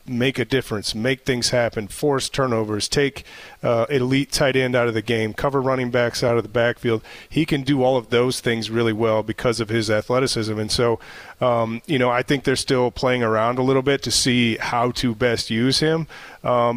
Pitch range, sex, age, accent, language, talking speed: 115-130 Hz, male, 30-49, American, English, 210 wpm